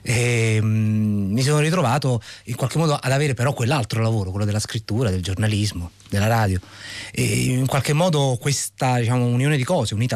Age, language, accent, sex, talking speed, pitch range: 30-49, Italian, native, male, 165 wpm, 100-130 Hz